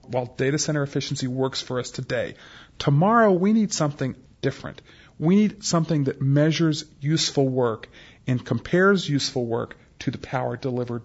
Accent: American